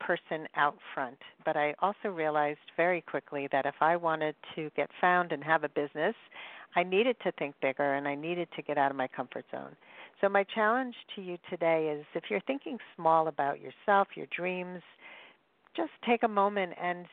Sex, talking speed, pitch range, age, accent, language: female, 195 wpm, 150-195 Hz, 50-69, American, English